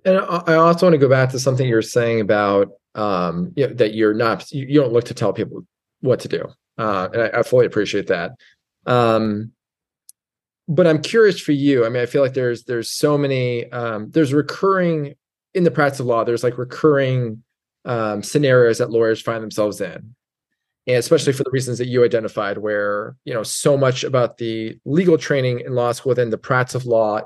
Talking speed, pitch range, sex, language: 205 wpm, 115-140 Hz, male, English